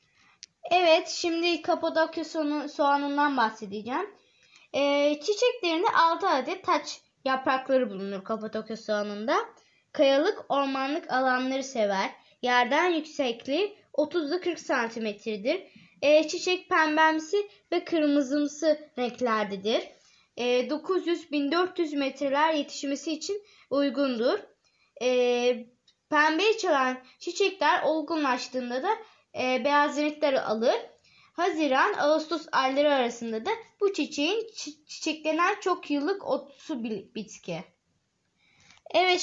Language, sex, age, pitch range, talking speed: Turkish, female, 20-39, 245-340 Hz, 85 wpm